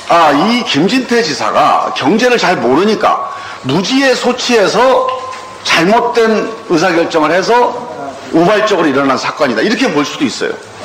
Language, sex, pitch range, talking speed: English, male, 205-290 Hz, 105 wpm